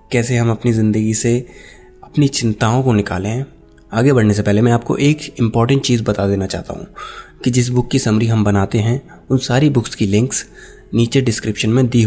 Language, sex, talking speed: Hindi, male, 195 wpm